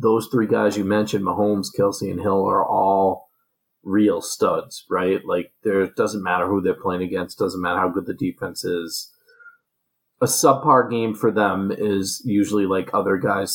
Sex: male